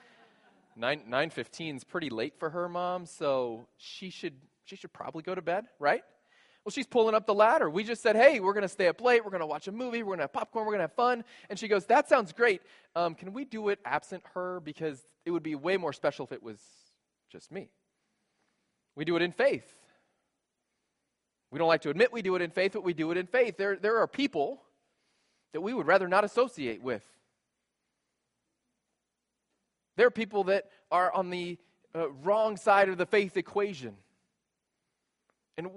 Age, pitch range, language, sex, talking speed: 20-39, 160-215 Hz, English, male, 205 wpm